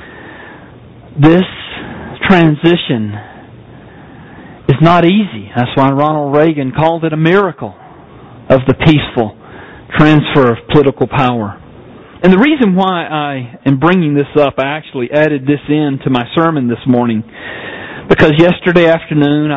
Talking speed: 130 wpm